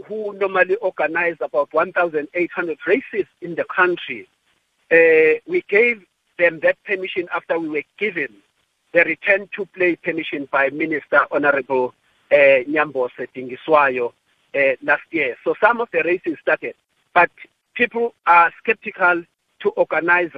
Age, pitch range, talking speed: 50-69, 145-230 Hz, 125 wpm